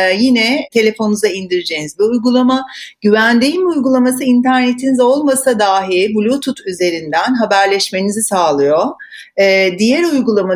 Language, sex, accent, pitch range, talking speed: Turkish, female, native, 175-230 Hz, 90 wpm